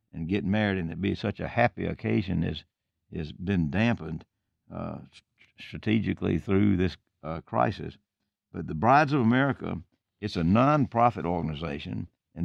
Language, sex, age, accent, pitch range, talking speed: English, male, 60-79, American, 90-110 Hz, 145 wpm